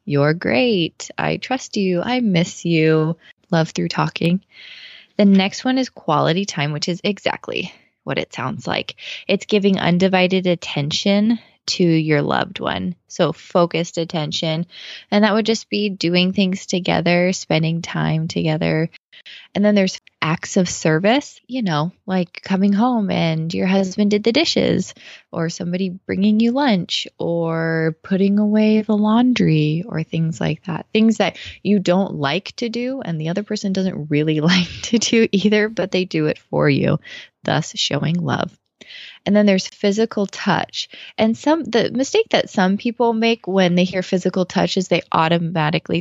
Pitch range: 165-210 Hz